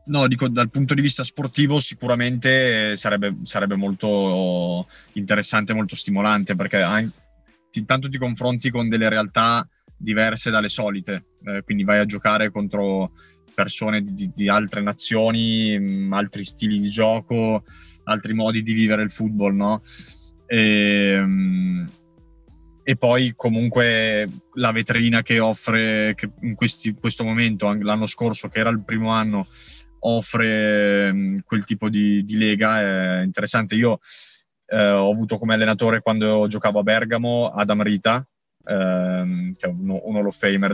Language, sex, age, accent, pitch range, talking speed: Italian, male, 20-39, native, 100-115 Hz, 135 wpm